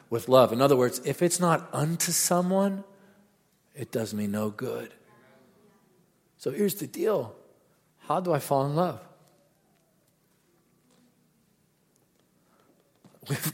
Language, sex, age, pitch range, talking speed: English, male, 50-69, 110-160 Hz, 115 wpm